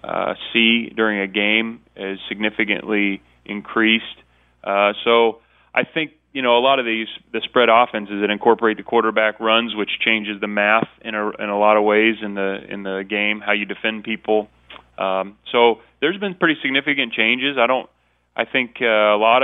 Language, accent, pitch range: English, American, 105-115 Hz